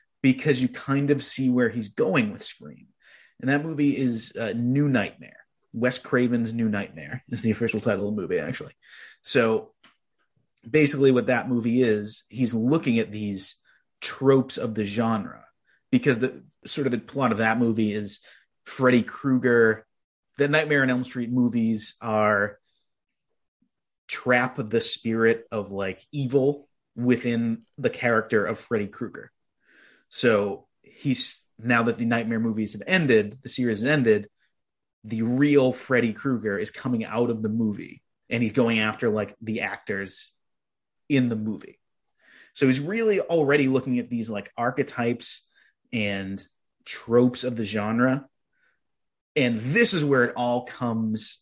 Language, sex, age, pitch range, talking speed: English, male, 30-49, 110-130 Hz, 150 wpm